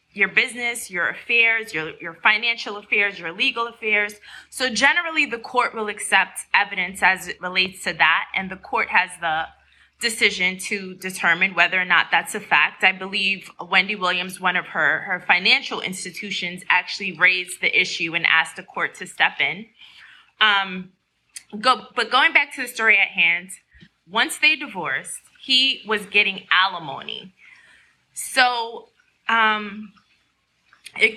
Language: English